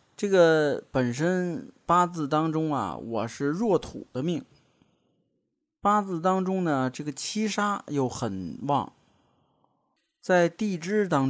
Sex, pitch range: male, 135-185 Hz